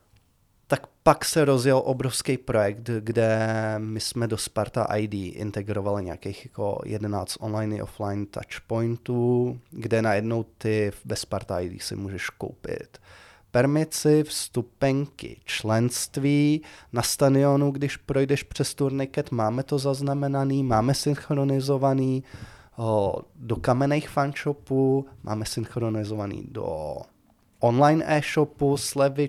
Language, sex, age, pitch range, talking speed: Czech, male, 20-39, 110-140 Hz, 105 wpm